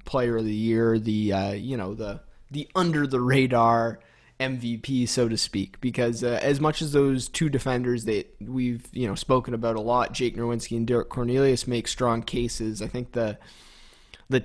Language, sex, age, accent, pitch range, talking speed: English, male, 20-39, American, 115-130 Hz, 185 wpm